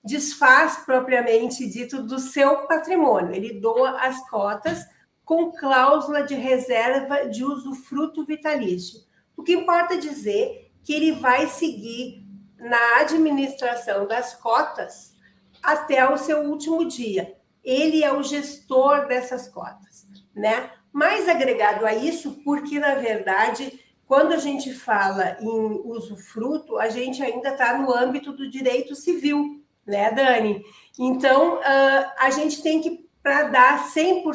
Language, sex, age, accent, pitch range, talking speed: Portuguese, female, 50-69, Brazilian, 235-290 Hz, 130 wpm